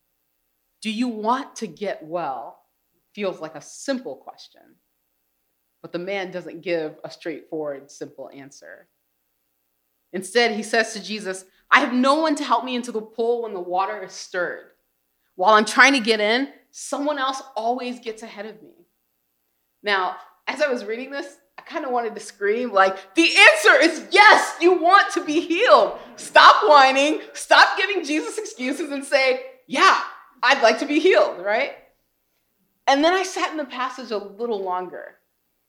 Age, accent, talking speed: 30-49, American, 170 wpm